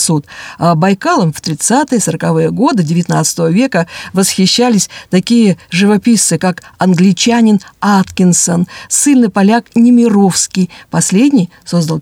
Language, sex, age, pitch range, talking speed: Russian, female, 50-69, 170-230 Hz, 95 wpm